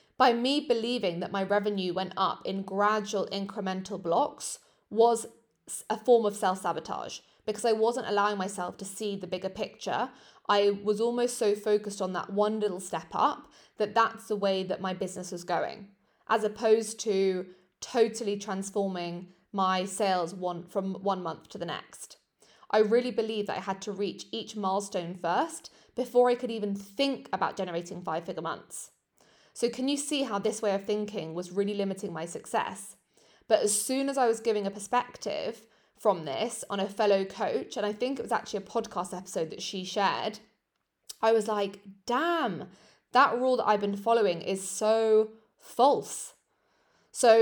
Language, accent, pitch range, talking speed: English, British, 190-225 Hz, 170 wpm